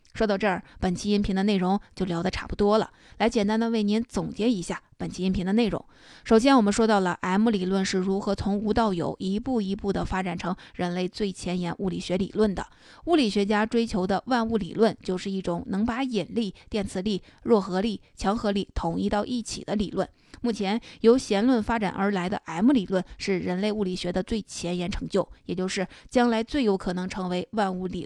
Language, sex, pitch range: Chinese, female, 185-220 Hz